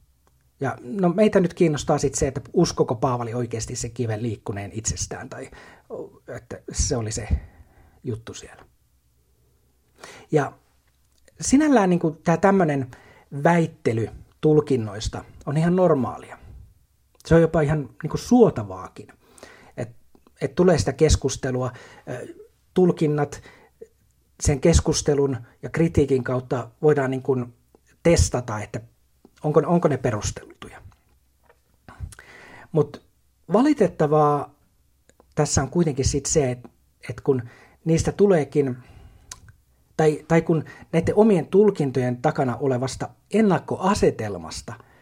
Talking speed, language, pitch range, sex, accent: 105 wpm, Finnish, 120-160 Hz, male, native